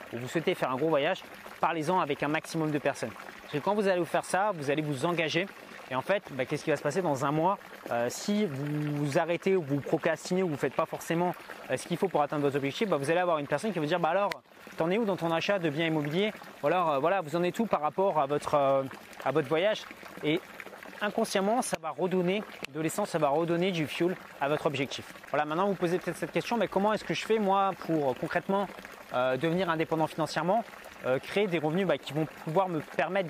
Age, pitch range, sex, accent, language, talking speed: 30-49, 155-195 Hz, male, French, French, 250 wpm